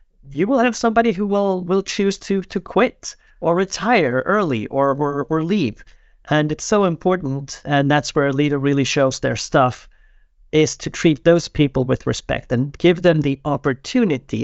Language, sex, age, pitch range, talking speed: English, male, 40-59, 135-170 Hz, 180 wpm